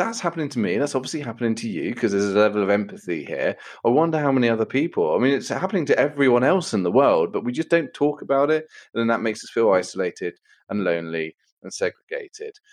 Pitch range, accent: 95-150 Hz, British